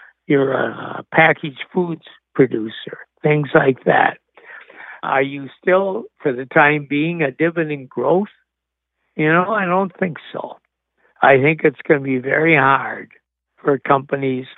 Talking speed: 140 wpm